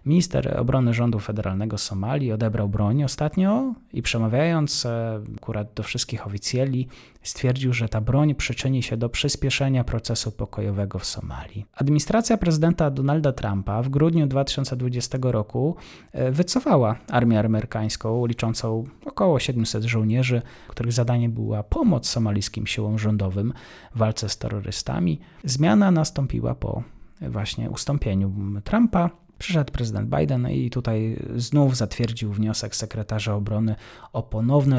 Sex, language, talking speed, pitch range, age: male, Polish, 120 wpm, 110-135 Hz, 30-49